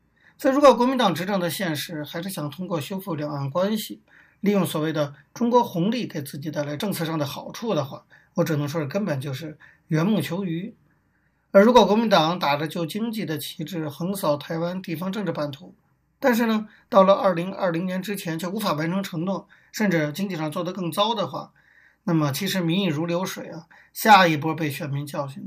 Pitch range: 155-195 Hz